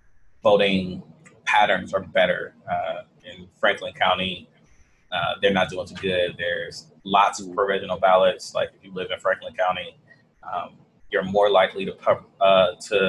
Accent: American